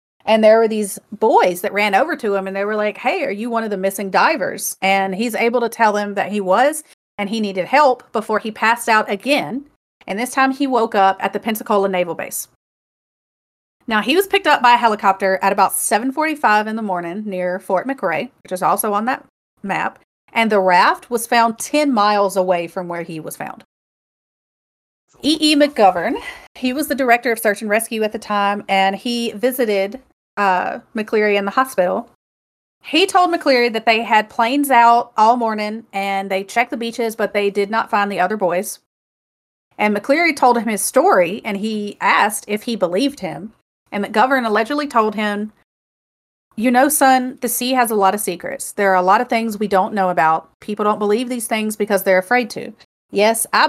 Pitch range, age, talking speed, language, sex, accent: 195-240 Hz, 40-59, 200 wpm, English, female, American